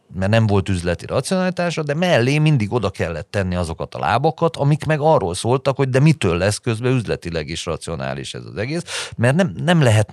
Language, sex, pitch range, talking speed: Hungarian, male, 85-110 Hz, 195 wpm